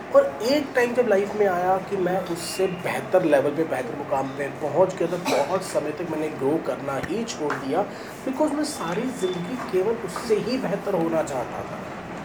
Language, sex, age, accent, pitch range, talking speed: Hindi, male, 30-49, native, 170-235 Hz, 190 wpm